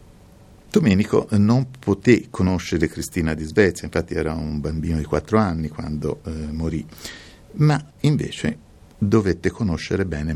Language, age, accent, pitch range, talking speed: Italian, 50-69, native, 80-105 Hz, 125 wpm